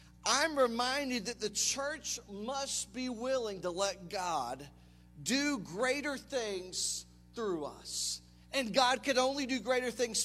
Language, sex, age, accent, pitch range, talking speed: English, male, 40-59, American, 175-255 Hz, 135 wpm